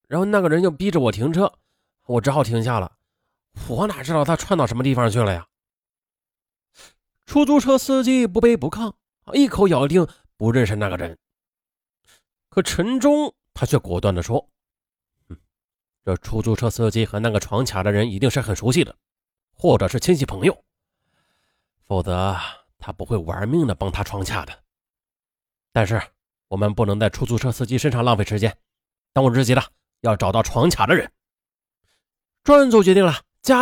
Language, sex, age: Chinese, male, 30-49